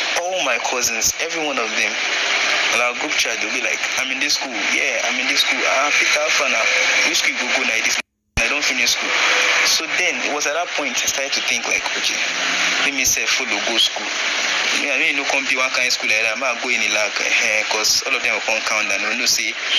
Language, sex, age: English, male, 20-39